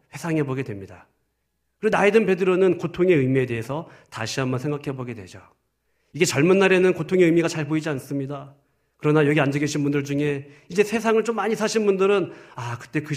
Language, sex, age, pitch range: Korean, male, 40-59, 125-175 Hz